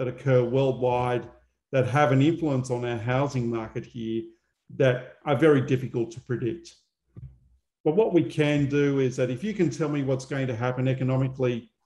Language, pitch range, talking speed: English, 125-145 Hz, 175 wpm